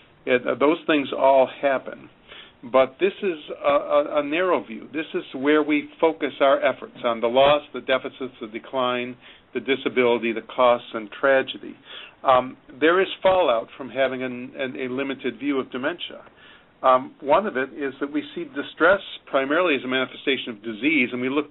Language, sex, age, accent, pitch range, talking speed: English, male, 50-69, American, 120-150 Hz, 175 wpm